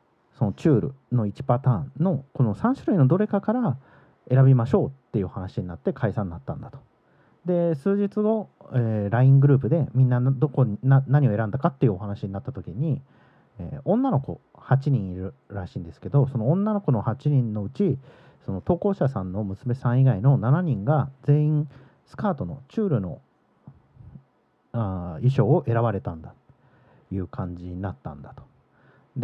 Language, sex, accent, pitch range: Japanese, male, native, 110-150 Hz